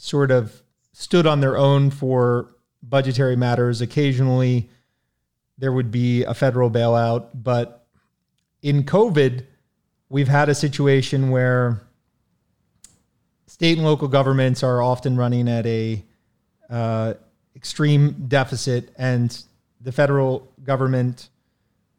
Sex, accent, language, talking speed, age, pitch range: male, American, English, 110 wpm, 30-49, 120-140 Hz